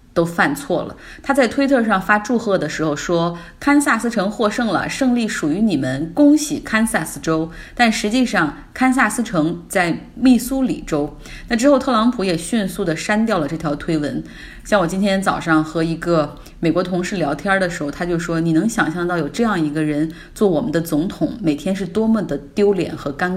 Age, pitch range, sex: 20-39, 165-235 Hz, female